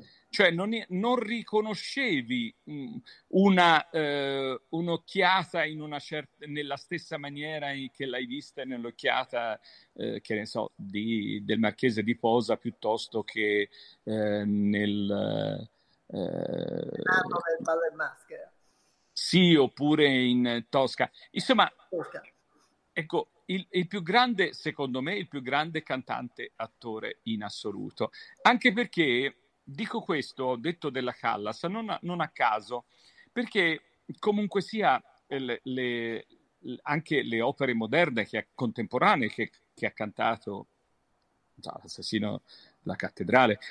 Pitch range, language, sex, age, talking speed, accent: 115-180 Hz, Italian, male, 50-69, 120 wpm, native